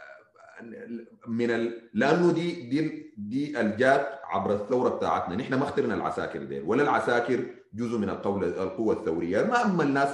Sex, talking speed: male, 140 wpm